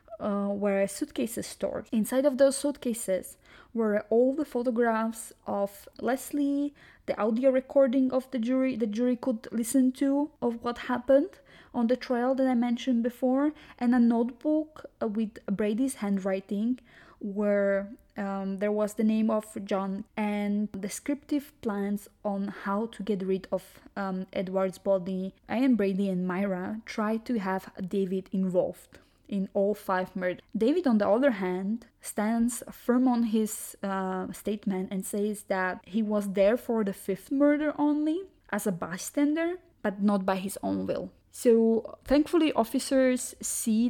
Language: English